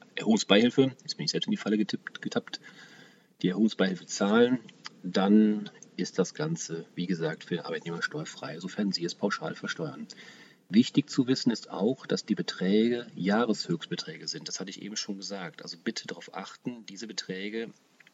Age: 40-59